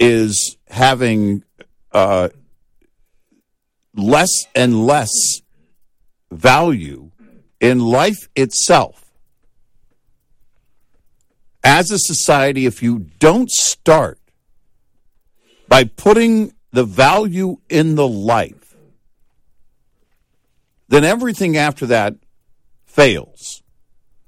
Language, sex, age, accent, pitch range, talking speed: English, male, 60-79, American, 105-140 Hz, 70 wpm